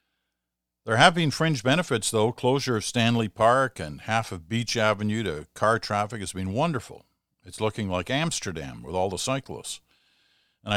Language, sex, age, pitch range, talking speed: English, male, 50-69, 90-120 Hz, 165 wpm